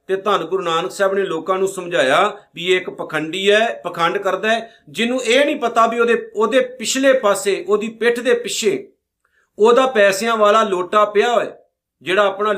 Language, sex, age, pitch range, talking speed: Punjabi, male, 50-69, 180-225 Hz, 175 wpm